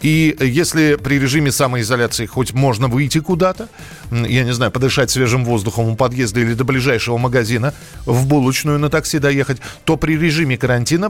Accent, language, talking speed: native, Russian, 160 wpm